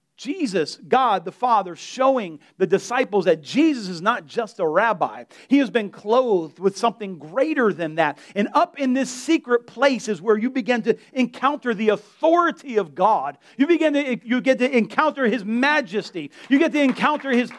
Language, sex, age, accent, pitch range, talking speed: English, male, 40-59, American, 225-295 Hz, 180 wpm